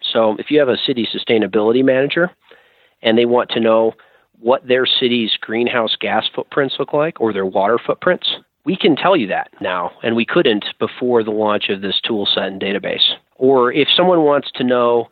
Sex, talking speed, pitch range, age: male, 195 wpm, 105-135 Hz, 40-59